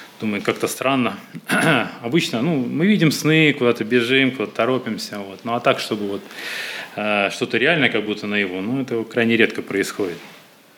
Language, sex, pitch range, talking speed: Russian, male, 115-165 Hz, 160 wpm